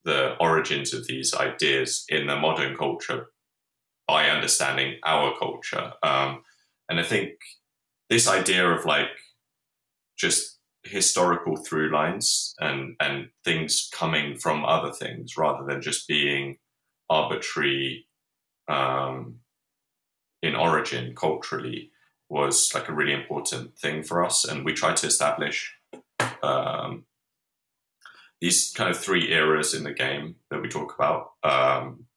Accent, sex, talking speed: British, male, 125 wpm